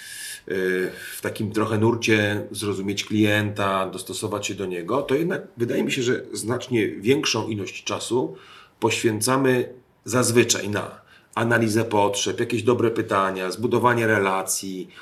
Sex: male